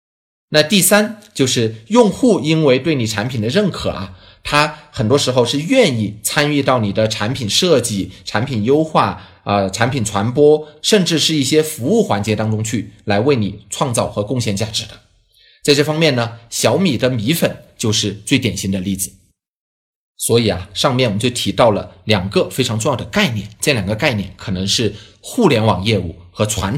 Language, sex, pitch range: English, male, 100-140 Hz